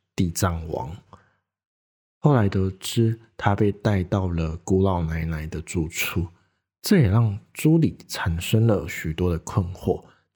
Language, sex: Chinese, male